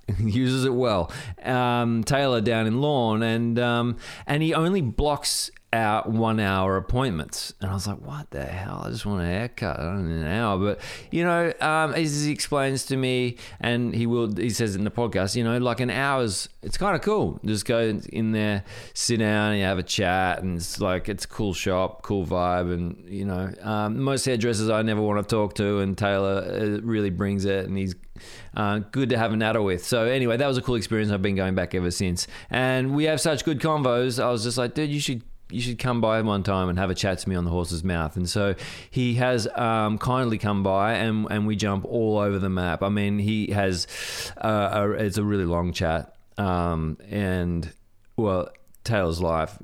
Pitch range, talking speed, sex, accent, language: 95-120 Hz, 215 wpm, male, Australian, English